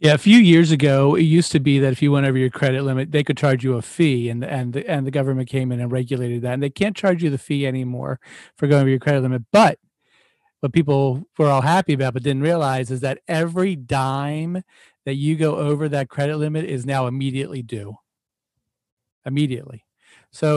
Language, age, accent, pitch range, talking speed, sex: English, 40-59, American, 130-160 Hz, 215 wpm, male